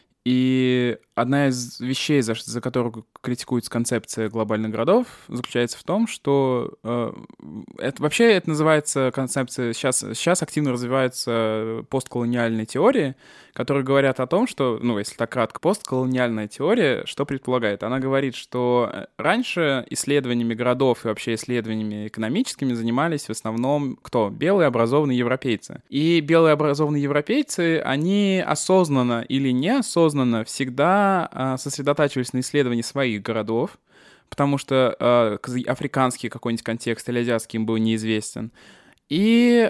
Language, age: Russian, 20-39